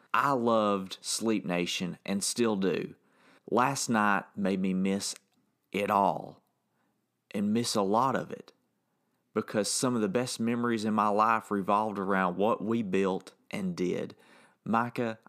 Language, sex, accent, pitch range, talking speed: English, male, American, 100-120 Hz, 145 wpm